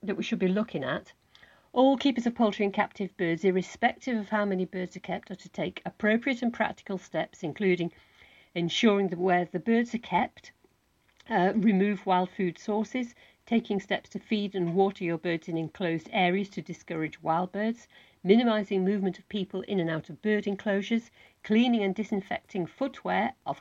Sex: female